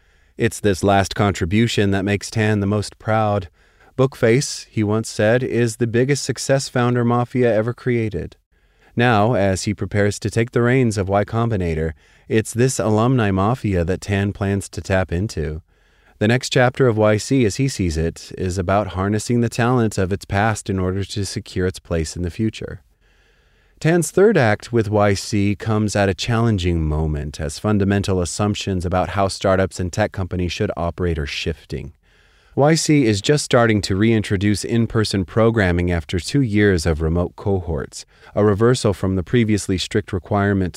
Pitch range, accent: 90-115 Hz, American